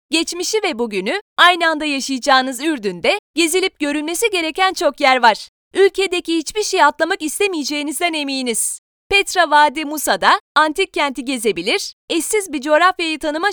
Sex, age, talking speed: female, 30-49, 130 wpm